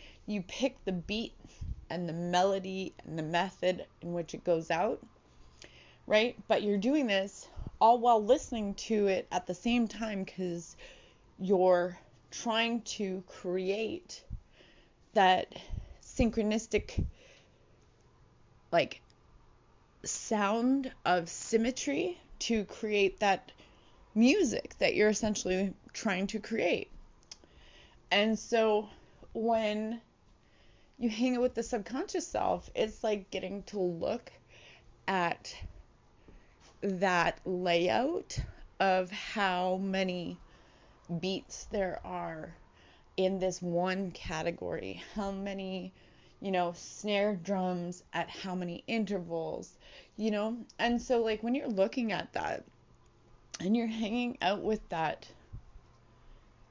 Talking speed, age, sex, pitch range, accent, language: 110 wpm, 30-49, female, 180-225 Hz, American, English